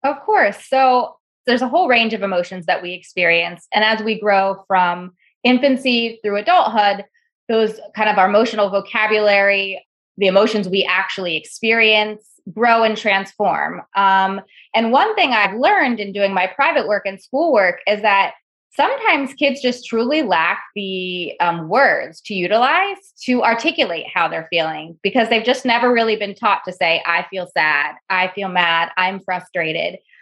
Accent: American